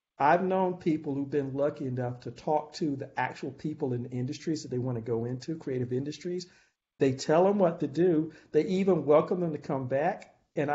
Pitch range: 140-195 Hz